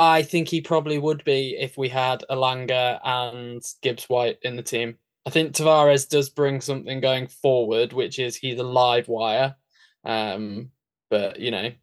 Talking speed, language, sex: 170 wpm, English, male